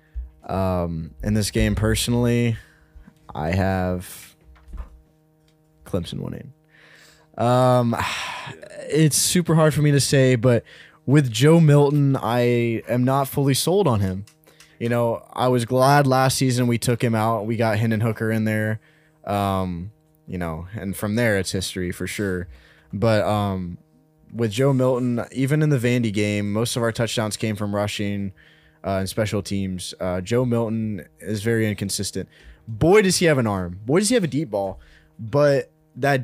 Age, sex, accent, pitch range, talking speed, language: 20-39, male, American, 100-130 Hz, 160 wpm, English